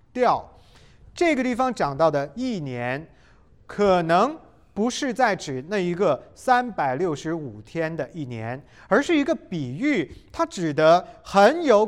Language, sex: Japanese, male